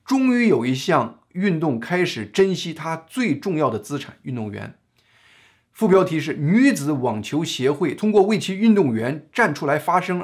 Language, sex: Chinese, male